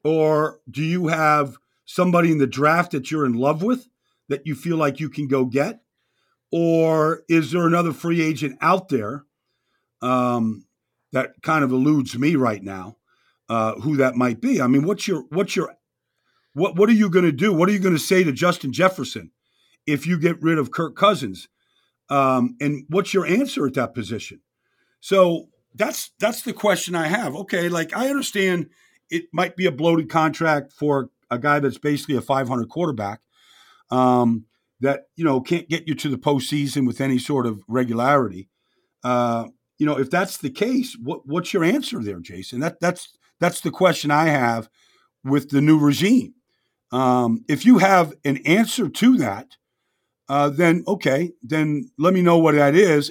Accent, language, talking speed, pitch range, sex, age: American, English, 180 wpm, 130-175 Hz, male, 50-69